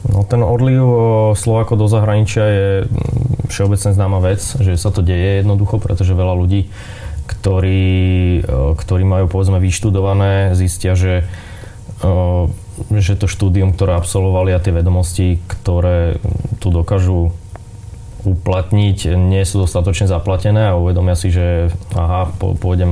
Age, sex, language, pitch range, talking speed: 20-39, male, Slovak, 90-100 Hz, 120 wpm